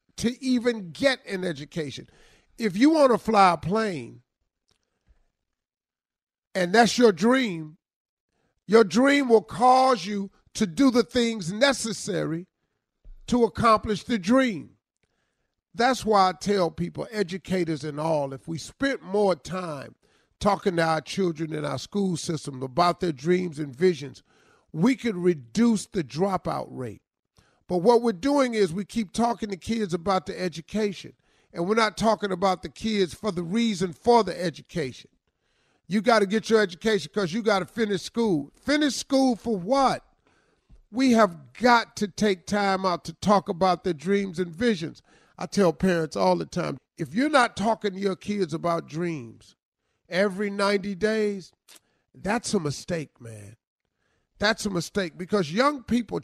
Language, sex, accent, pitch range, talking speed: English, male, American, 175-225 Hz, 155 wpm